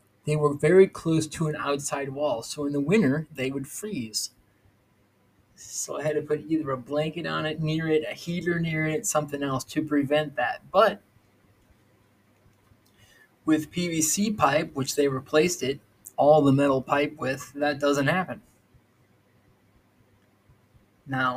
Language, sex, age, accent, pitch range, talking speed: English, male, 20-39, American, 125-150 Hz, 150 wpm